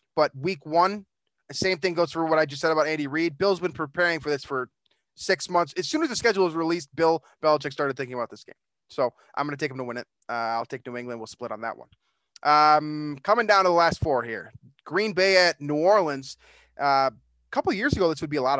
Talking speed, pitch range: 260 wpm, 135-165 Hz